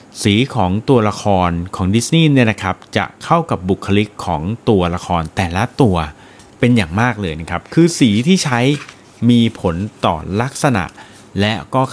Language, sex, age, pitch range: Thai, male, 30-49, 95-125 Hz